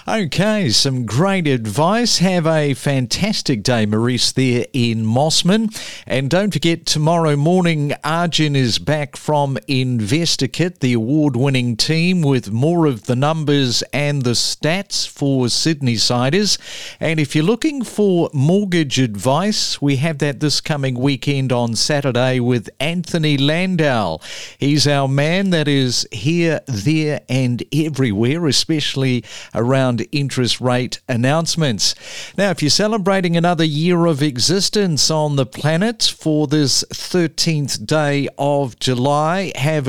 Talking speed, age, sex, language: 130 wpm, 50-69, male, English